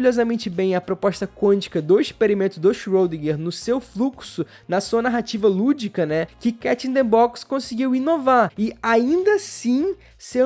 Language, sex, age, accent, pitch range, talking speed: Portuguese, male, 20-39, Brazilian, 190-245 Hz, 160 wpm